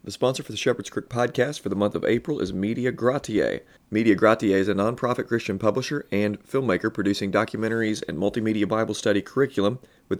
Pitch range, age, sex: 100-120 Hz, 30-49, male